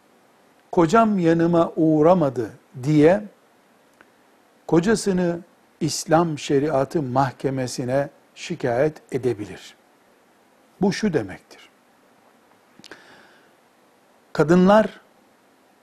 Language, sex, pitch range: Turkish, male, 145-185 Hz